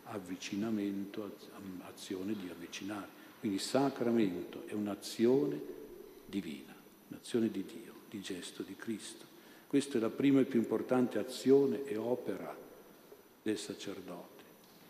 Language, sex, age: Italian, male, 50-69